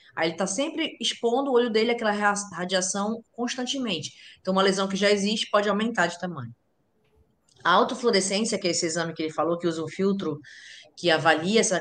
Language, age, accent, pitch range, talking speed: Portuguese, 20-39, Brazilian, 155-205 Hz, 190 wpm